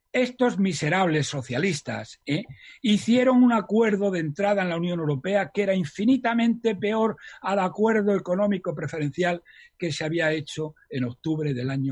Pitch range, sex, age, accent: 135-195 Hz, male, 60-79, Spanish